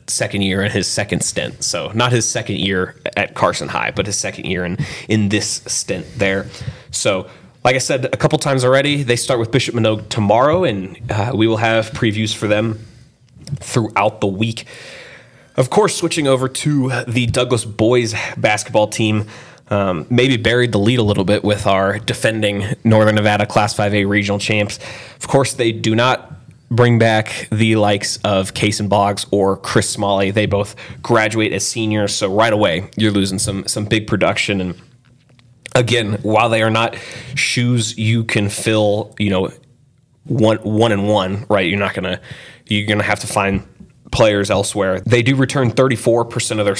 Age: 20-39